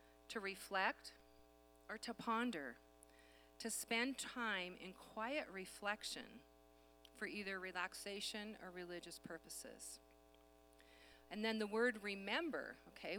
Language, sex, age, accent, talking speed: English, female, 40-59, American, 105 wpm